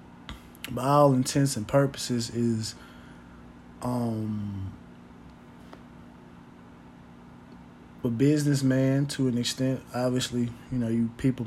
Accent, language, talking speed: American, English, 90 wpm